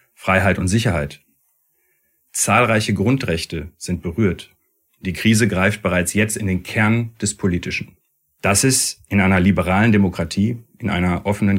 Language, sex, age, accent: German, male, 40-59, German